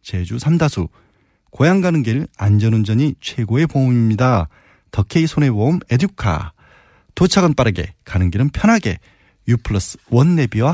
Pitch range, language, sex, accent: 100-145 Hz, Korean, male, native